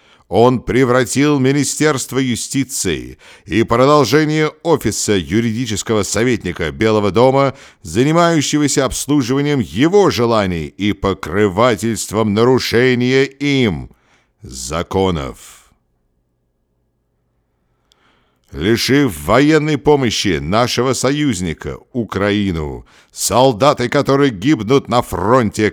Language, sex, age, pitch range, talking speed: English, male, 50-69, 85-130 Hz, 70 wpm